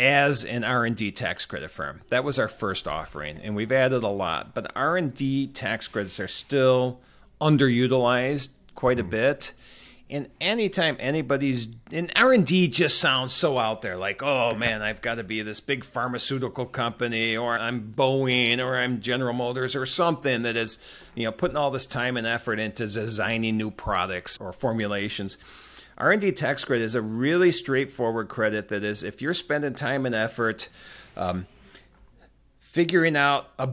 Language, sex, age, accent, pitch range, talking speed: English, male, 40-59, American, 115-145 Hz, 160 wpm